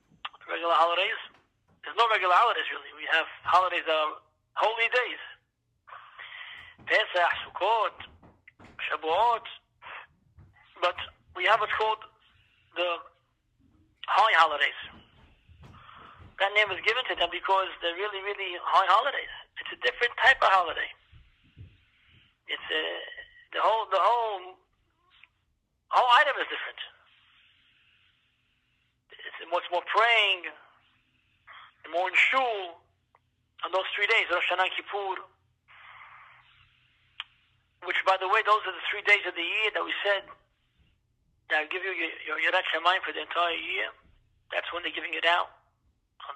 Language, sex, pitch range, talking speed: English, male, 160-210 Hz, 130 wpm